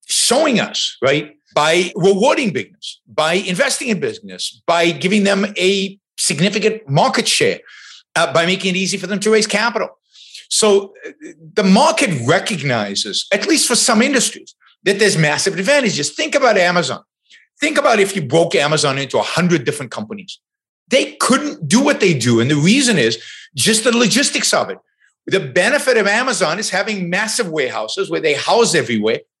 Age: 50-69